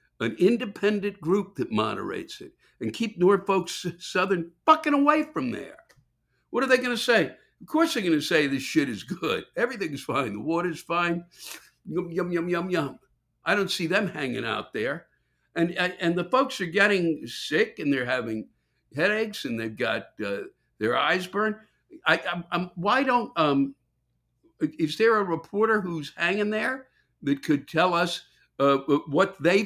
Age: 60-79